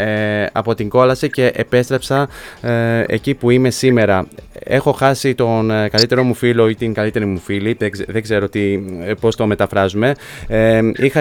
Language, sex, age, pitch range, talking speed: Greek, male, 20-39, 110-130 Hz, 140 wpm